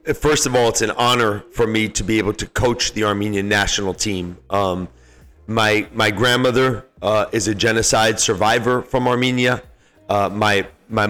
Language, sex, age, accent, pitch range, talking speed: English, male, 30-49, American, 105-125 Hz, 170 wpm